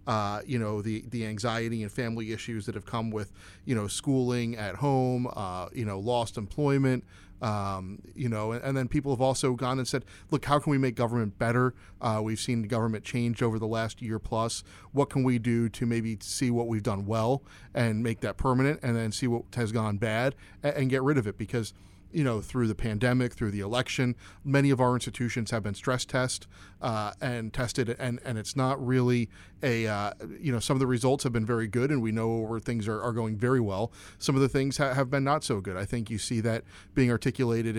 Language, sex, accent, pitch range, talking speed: English, male, American, 105-125 Hz, 230 wpm